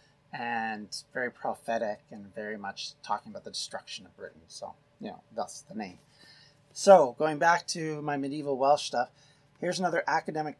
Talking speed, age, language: 165 wpm, 30-49, English